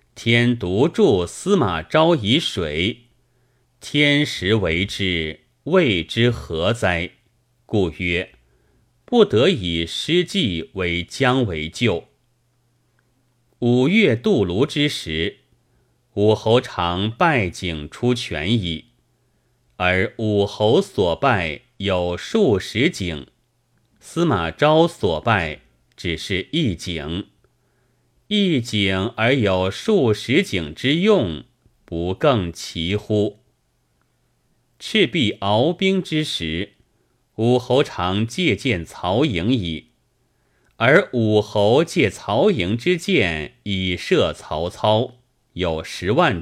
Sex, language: male, Chinese